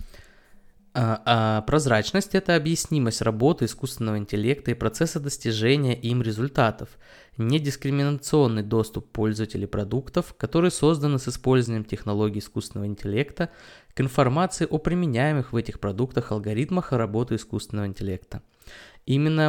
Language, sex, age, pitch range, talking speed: Russian, male, 20-39, 110-145 Hz, 110 wpm